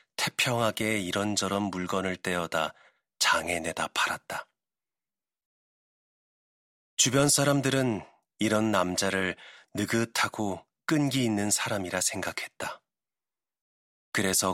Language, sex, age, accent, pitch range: Korean, male, 30-49, native, 95-120 Hz